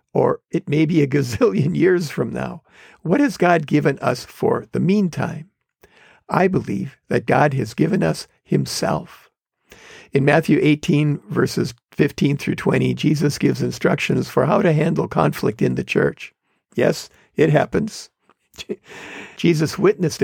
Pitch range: 145-185 Hz